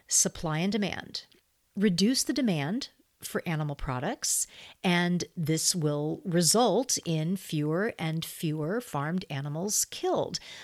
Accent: American